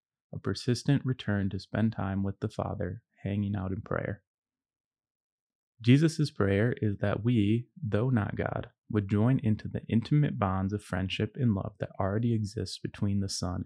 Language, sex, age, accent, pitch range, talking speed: English, male, 30-49, American, 100-115 Hz, 165 wpm